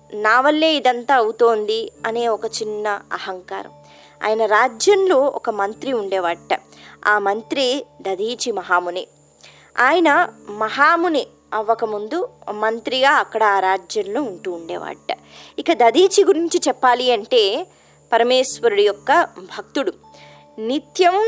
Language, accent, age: Telugu, native, 20-39